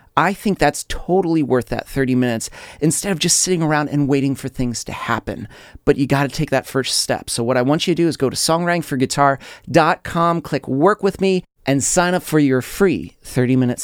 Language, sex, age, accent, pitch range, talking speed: English, male, 30-49, American, 130-170 Hz, 215 wpm